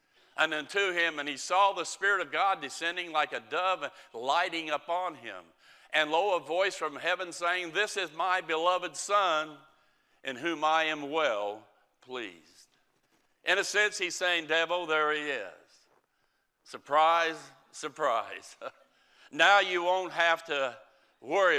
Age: 60-79